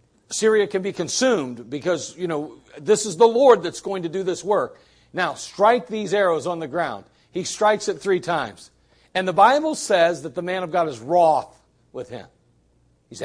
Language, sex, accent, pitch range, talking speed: English, male, American, 145-215 Hz, 195 wpm